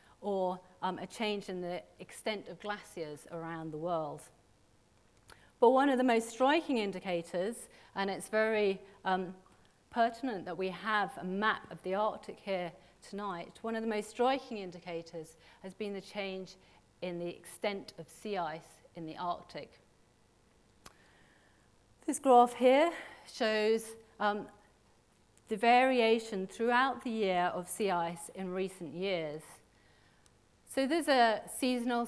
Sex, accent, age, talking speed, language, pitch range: female, British, 40-59, 135 wpm, English, 180-220 Hz